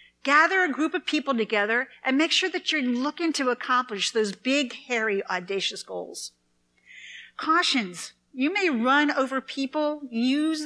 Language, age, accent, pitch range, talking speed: English, 50-69, American, 205-275 Hz, 145 wpm